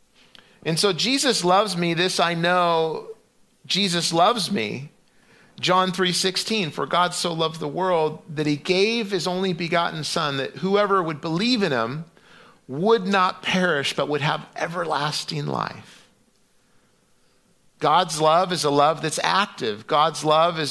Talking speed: 145 wpm